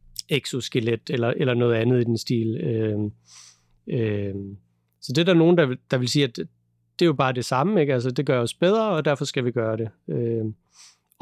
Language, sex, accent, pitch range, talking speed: Danish, male, native, 125-150 Hz, 210 wpm